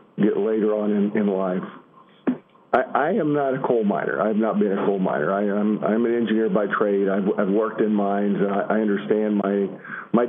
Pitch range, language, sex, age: 110-150 Hz, English, male, 50-69